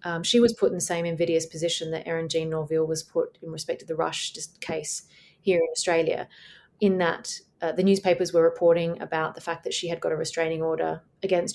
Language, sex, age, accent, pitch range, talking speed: English, female, 30-49, Australian, 165-195 Hz, 220 wpm